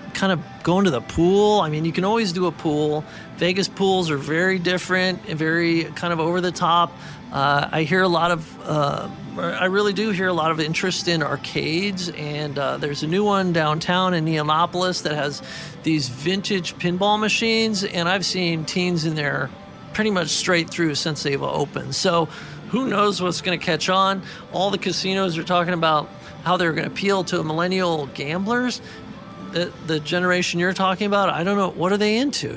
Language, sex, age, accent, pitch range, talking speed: English, male, 40-59, American, 165-190 Hz, 190 wpm